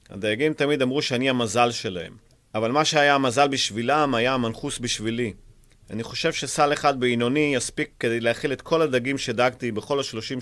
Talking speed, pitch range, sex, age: 160 wpm, 110-135 Hz, male, 30-49